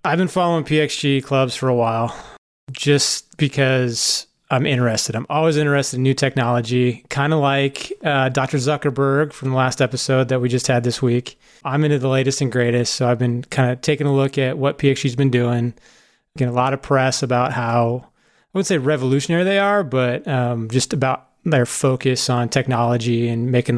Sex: male